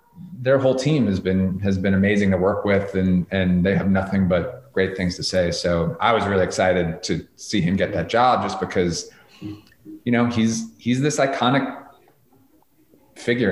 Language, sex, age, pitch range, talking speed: English, male, 30-49, 90-125 Hz, 180 wpm